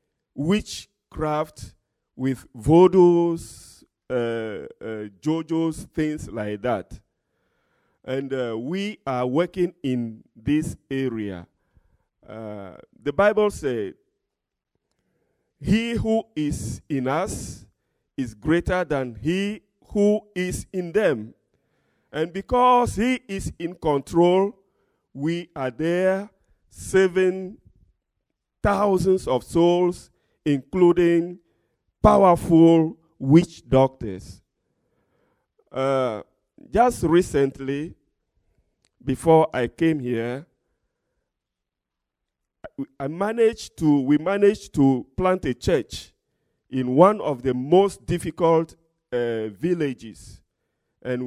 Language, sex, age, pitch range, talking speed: English, male, 50-69, 125-180 Hz, 90 wpm